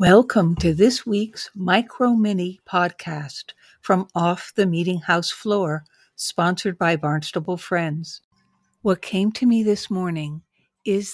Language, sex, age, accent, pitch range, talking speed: English, female, 60-79, American, 175-240 Hz, 125 wpm